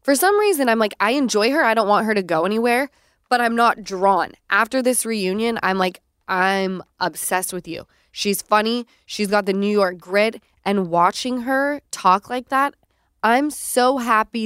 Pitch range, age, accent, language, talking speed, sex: 175-220 Hz, 20-39, American, English, 185 wpm, female